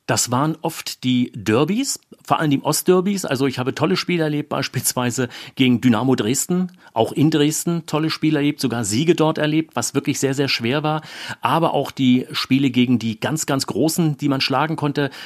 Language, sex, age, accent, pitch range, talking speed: German, male, 40-59, German, 125-155 Hz, 190 wpm